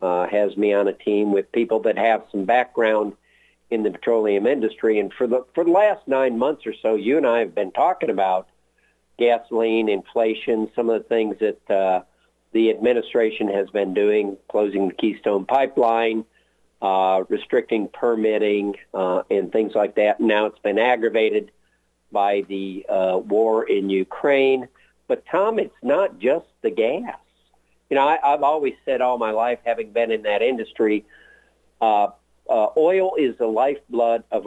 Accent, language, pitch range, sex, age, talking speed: American, English, 100-120 Hz, male, 50-69, 165 wpm